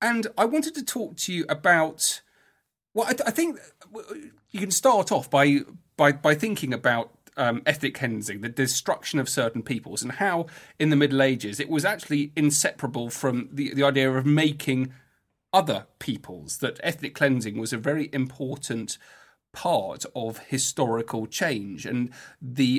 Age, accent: 40-59, British